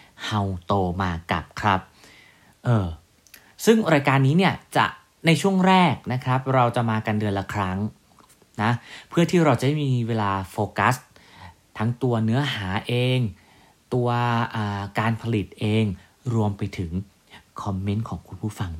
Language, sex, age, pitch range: Thai, male, 30-49, 100-130 Hz